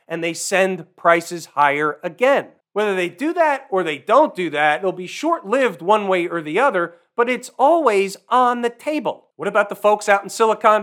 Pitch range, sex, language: 165-225 Hz, male, English